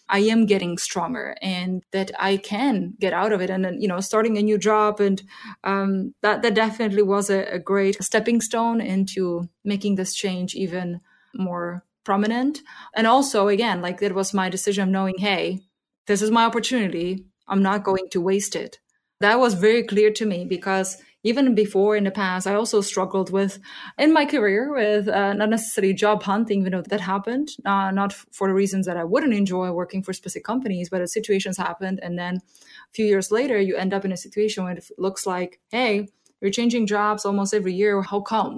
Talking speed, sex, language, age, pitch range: 200 wpm, female, English, 20-39, 190-220 Hz